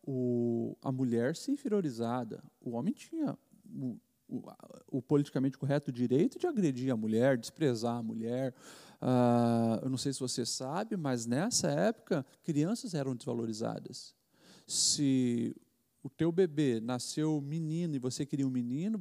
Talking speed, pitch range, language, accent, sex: 140 wpm, 130-200 Hz, English, Brazilian, male